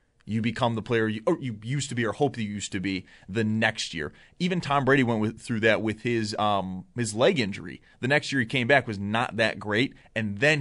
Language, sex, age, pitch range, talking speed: English, male, 30-49, 110-150 Hz, 250 wpm